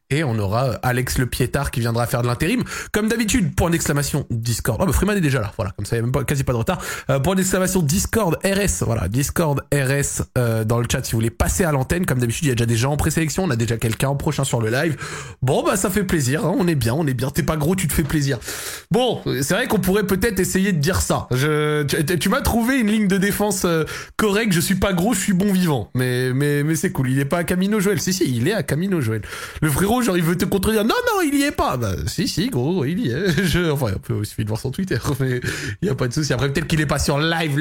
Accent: French